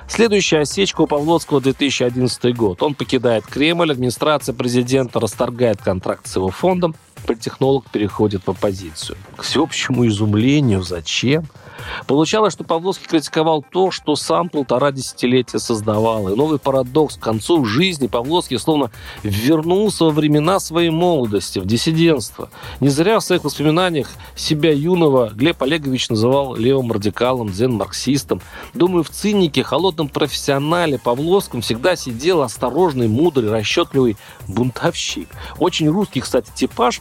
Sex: male